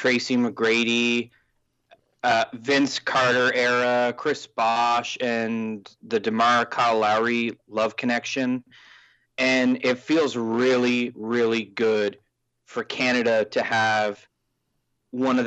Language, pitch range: English, 115-135 Hz